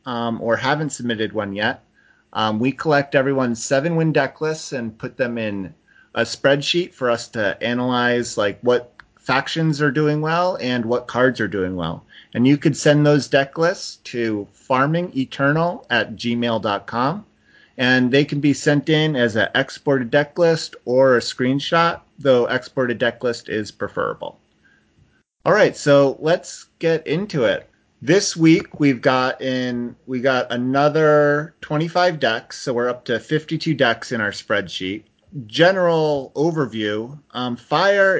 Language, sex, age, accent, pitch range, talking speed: English, male, 30-49, American, 110-150 Hz, 150 wpm